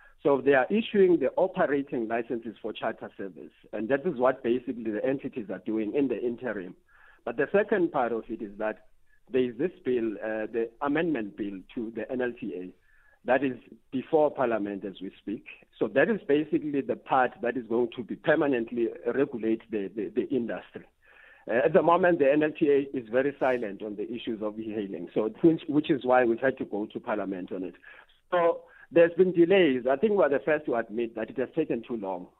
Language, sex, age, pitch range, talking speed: English, male, 50-69, 110-150 Hz, 200 wpm